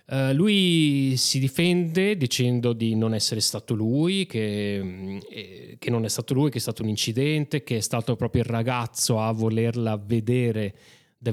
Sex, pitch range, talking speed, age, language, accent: male, 115-135 Hz, 160 wpm, 30-49, Italian, native